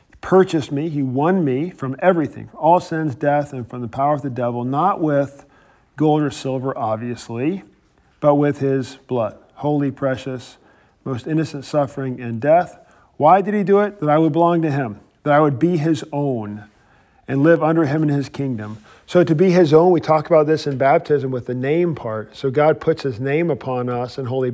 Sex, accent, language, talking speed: male, American, English, 200 wpm